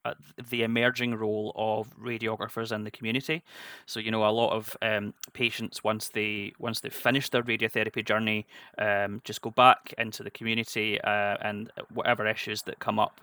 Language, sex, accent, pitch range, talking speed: English, male, British, 105-115 Hz, 170 wpm